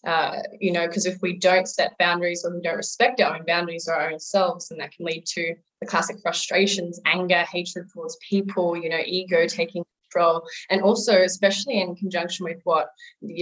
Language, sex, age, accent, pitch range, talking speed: English, female, 20-39, Australian, 165-185 Hz, 200 wpm